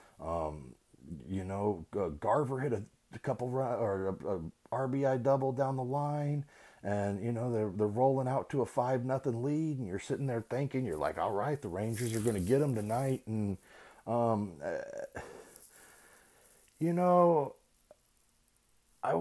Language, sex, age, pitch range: English, male, 30-49, 110-145 Hz